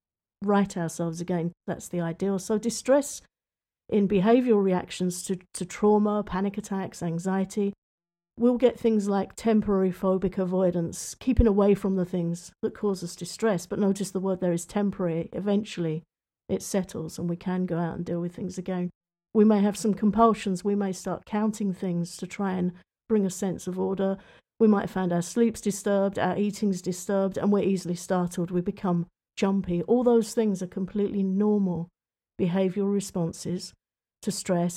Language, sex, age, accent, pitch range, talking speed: English, female, 50-69, British, 180-210 Hz, 165 wpm